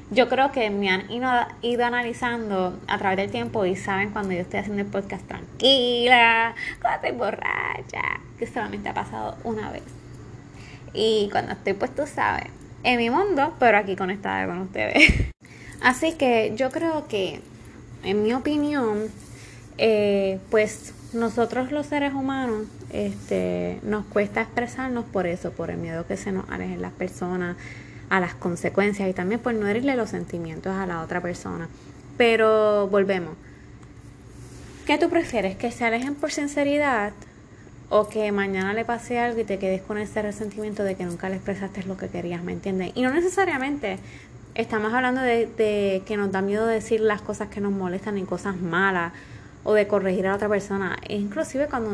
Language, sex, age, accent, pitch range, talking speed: Spanish, female, 20-39, American, 190-235 Hz, 170 wpm